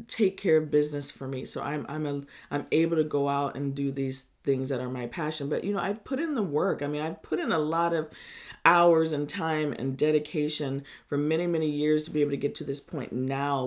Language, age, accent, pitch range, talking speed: English, 40-59, American, 145-215 Hz, 250 wpm